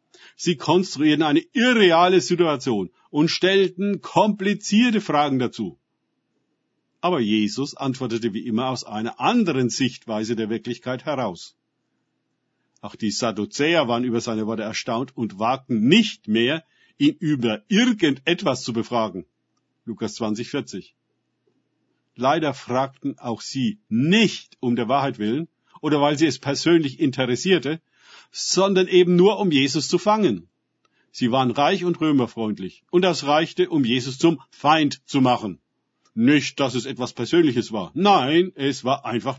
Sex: male